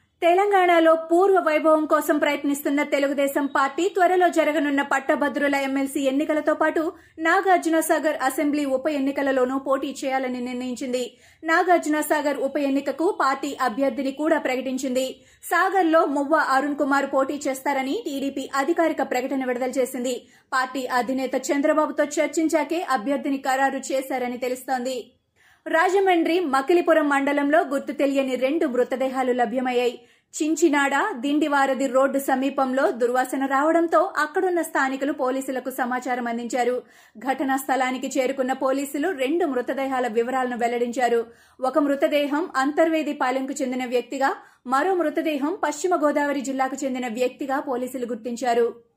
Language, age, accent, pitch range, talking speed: Telugu, 30-49, native, 260-315 Hz, 110 wpm